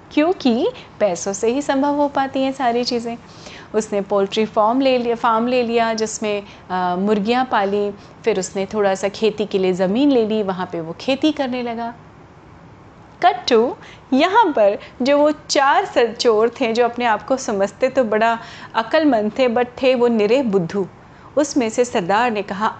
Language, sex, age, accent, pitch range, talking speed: Hindi, female, 30-49, native, 205-280 Hz, 170 wpm